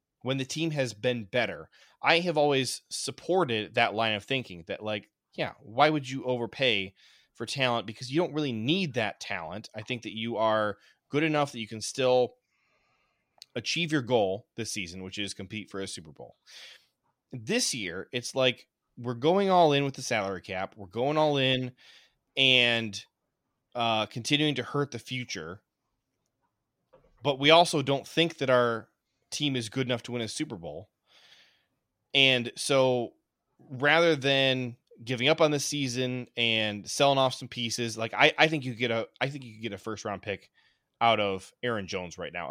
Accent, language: American, English